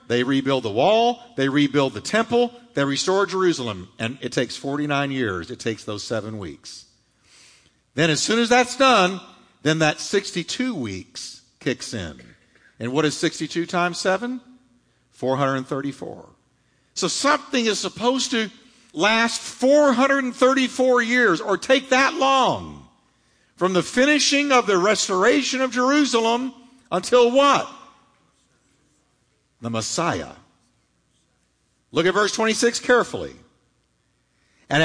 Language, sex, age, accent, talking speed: English, male, 50-69, American, 120 wpm